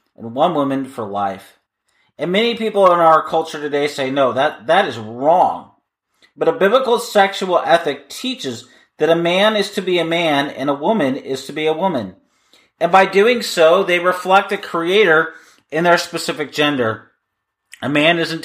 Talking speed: 180 wpm